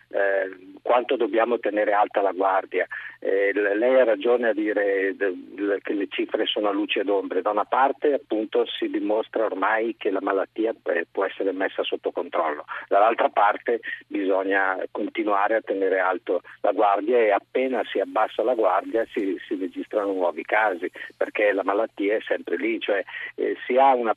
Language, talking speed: Italian, 165 wpm